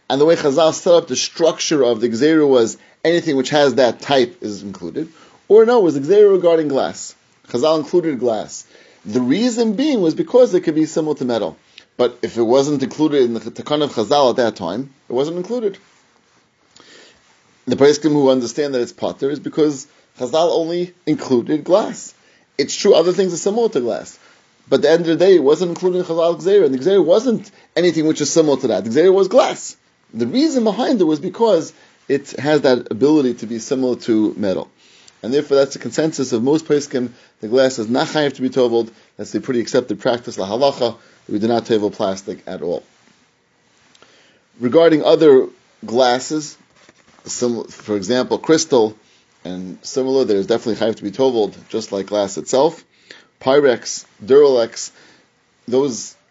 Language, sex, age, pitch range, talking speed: English, male, 30-49, 125-170 Hz, 180 wpm